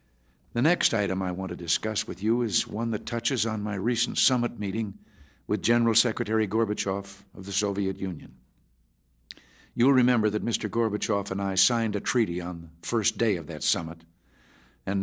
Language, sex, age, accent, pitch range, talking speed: English, male, 60-79, American, 90-115 Hz, 175 wpm